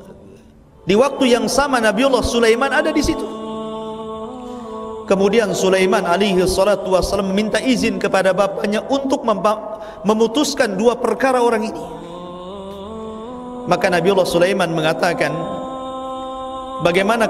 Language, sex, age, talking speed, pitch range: Indonesian, male, 50-69, 110 wpm, 190-250 Hz